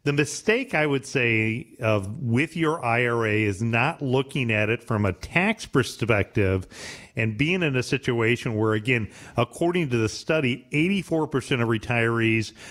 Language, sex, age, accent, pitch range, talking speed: English, male, 40-59, American, 110-135 Hz, 150 wpm